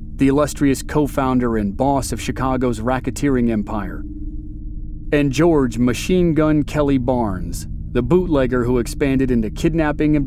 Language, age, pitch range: English, 40-59, 105-150 Hz